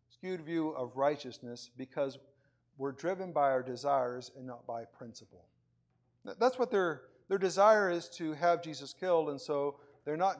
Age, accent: 50-69, American